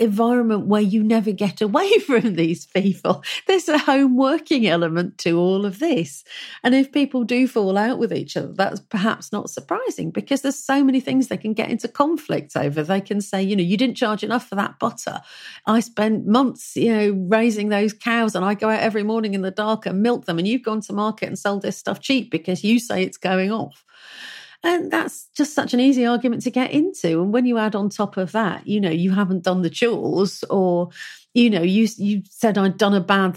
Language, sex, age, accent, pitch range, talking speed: English, female, 40-59, British, 185-240 Hz, 225 wpm